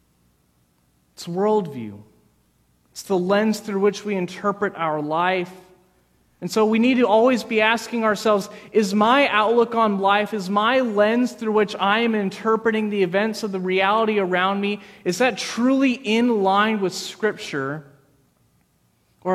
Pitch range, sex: 185-225 Hz, male